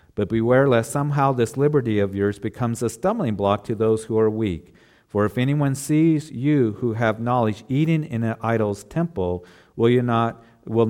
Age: 50-69